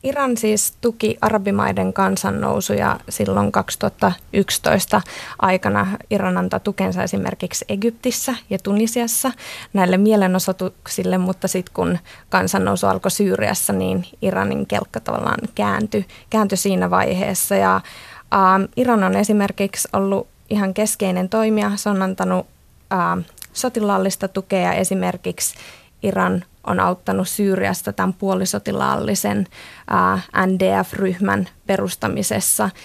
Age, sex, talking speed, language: 20-39, female, 95 wpm, Finnish